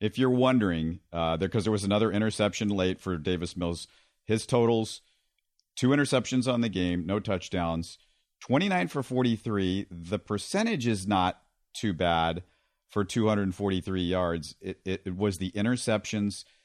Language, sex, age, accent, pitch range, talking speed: English, male, 50-69, American, 95-115 Hz, 145 wpm